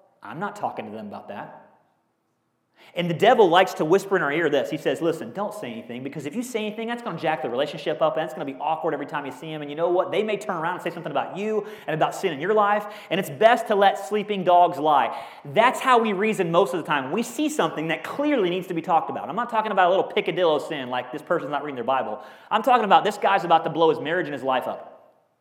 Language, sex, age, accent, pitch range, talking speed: English, male, 30-49, American, 145-210 Hz, 285 wpm